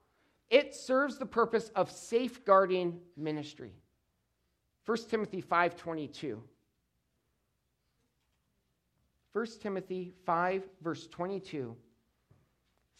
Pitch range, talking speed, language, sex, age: 145-210 Hz, 60 wpm, English, male, 40-59